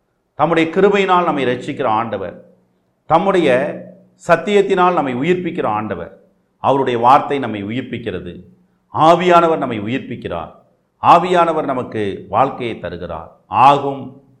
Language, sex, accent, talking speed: Tamil, male, native, 90 wpm